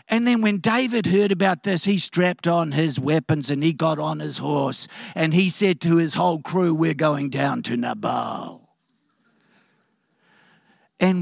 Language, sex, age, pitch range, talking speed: English, male, 50-69, 175-255 Hz, 165 wpm